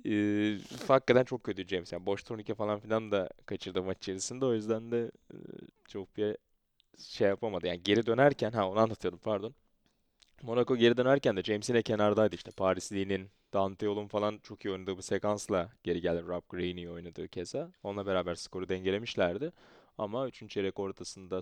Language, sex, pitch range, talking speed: Turkish, male, 95-110 Hz, 165 wpm